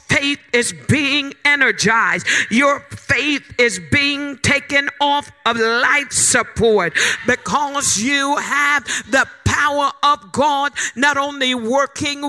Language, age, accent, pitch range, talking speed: English, 50-69, American, 245-290 Hz, 115 wpm